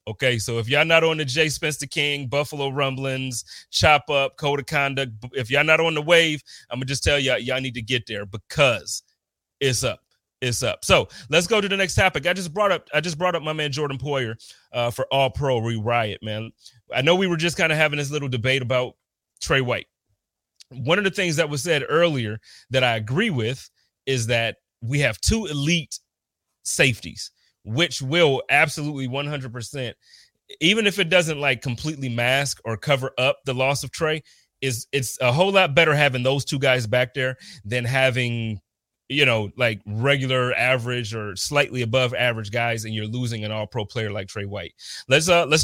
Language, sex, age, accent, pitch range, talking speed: English, male, 30-49, American, 120-150 Hz, 200 wpm